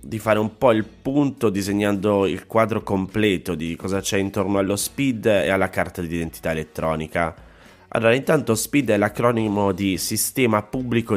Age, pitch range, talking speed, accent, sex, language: 30-49, 90-110 Hz, 160 wpm, native, male, Italian